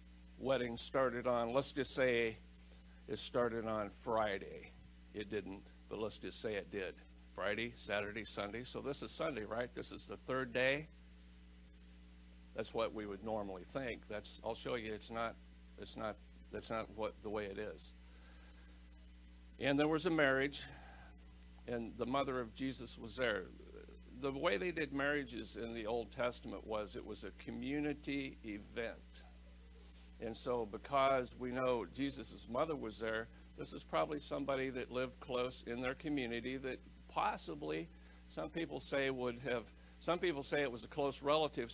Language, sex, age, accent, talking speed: English, male, 50-69, American, 160 wpm